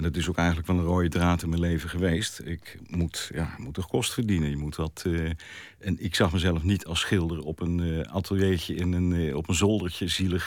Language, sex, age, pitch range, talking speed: Dutch, male, 50-69, 85-105 Hz, 240 wpm